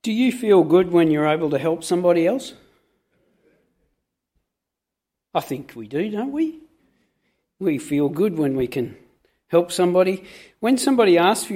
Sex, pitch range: male, 160-225 Hz